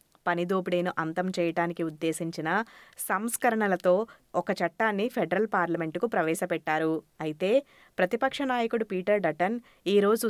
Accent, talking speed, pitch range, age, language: native, 95 wpm, 170-215 Hz, 20-39, Telugu